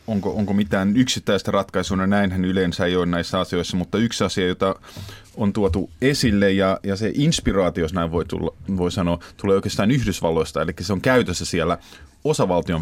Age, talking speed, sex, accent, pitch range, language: 30-49, 180 wpm, male, native, 90-115 Hz, Finnish